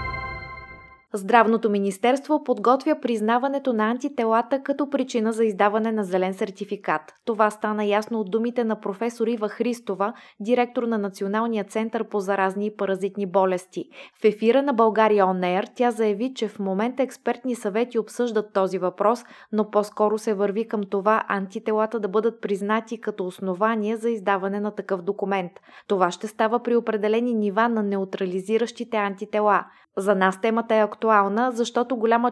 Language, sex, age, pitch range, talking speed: Bulgarian, female, 20-39, 200-235 Hz, 150 wpm